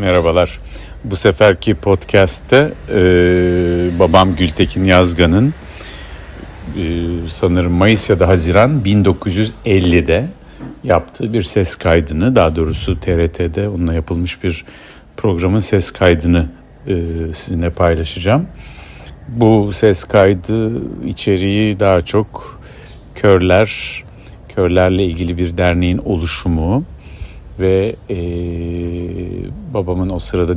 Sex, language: male, Turkish